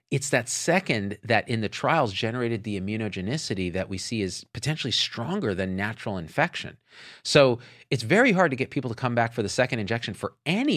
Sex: male